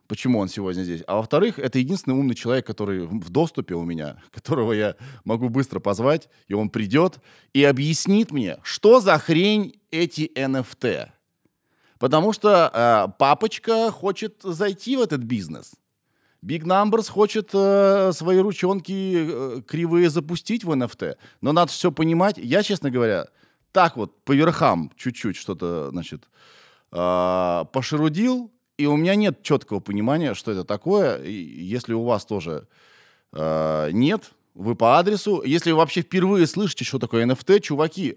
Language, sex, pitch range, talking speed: Russian, male, 110-185 Hz, 150 wpm